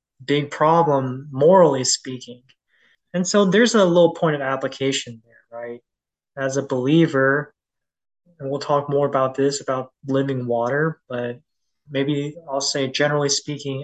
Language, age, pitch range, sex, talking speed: English, 20-39, 130-155 Hz, male, 140 wpm